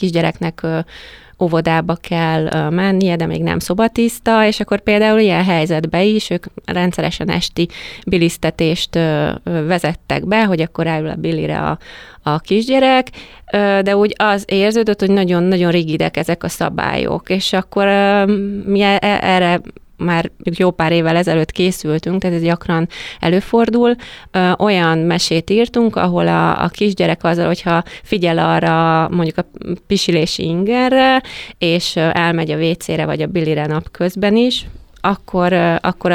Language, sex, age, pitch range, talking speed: Hungarian, female, 30-49, 165-195 Hz, 130 wpm